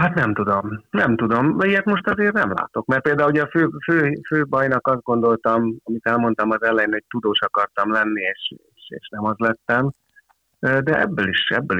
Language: Hungarian